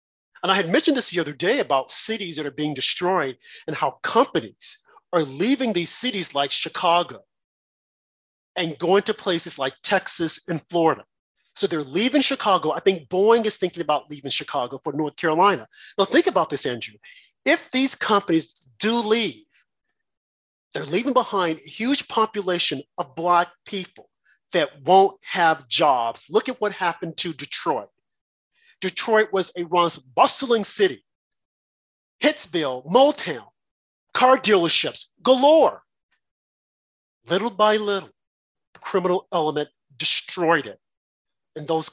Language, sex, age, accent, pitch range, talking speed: English, male, 40-59, American, 150-205 Hz, 135 wpm